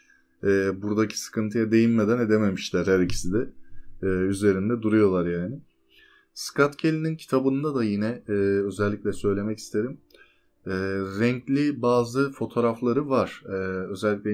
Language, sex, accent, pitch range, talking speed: Turkish, male, native, 100-125 Hz, 95 wpm